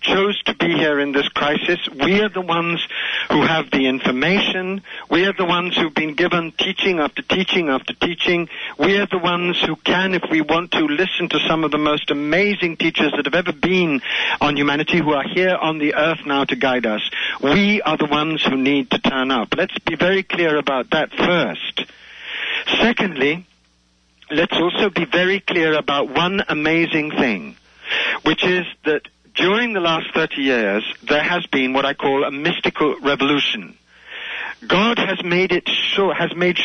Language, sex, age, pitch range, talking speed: English, male, 60-79, 145-185 Hz, 180 wpm